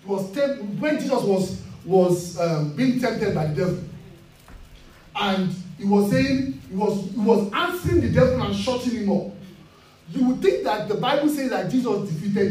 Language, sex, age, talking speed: English, male, 40-59, 180 wpm